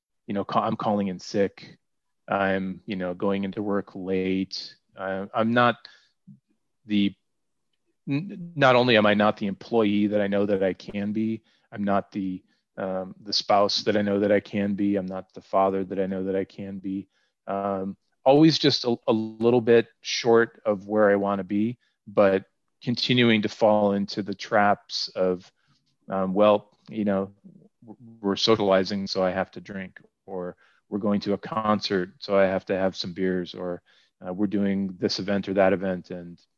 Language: English